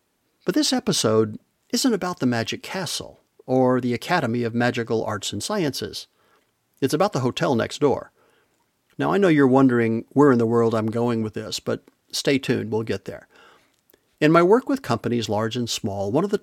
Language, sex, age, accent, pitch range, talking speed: English, male, 50-69, American, 110-150 Hz, 190 wpm